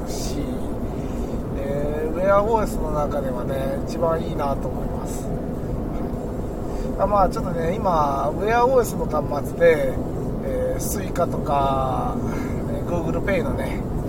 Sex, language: male, Japanese